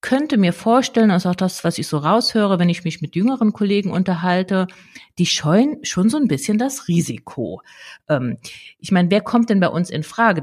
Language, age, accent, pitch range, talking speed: German, 50-69, German, 140-190 Hz, 195 wpm